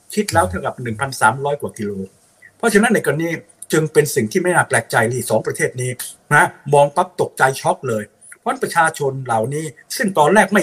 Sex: male